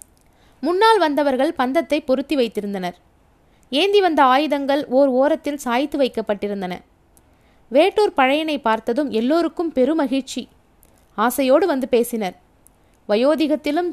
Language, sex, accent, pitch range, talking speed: Tamil, female, native, 250-320 Hz, 90 wpm